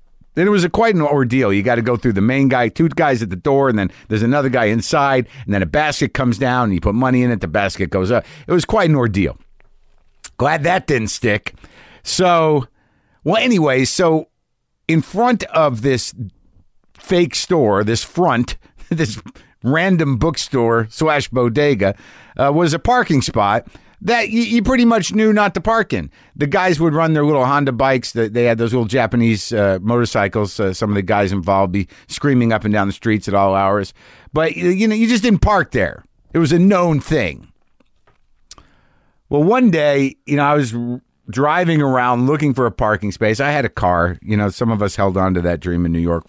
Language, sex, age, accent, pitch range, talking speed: English, male, 50-69, American, 100-150 Hz, 205 wpm